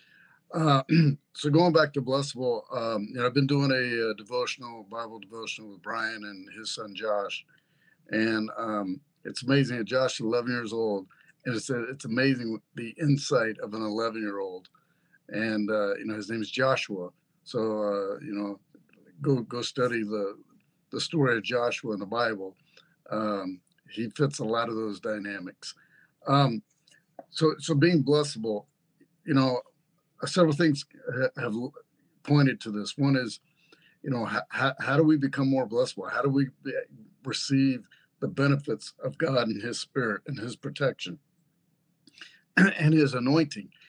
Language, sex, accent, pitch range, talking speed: English, male, American, 110-155 Hz, 155 wpm